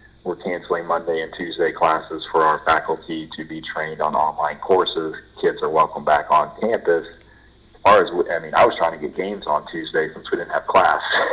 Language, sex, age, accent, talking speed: English, male, 40-59, American, 210 wpm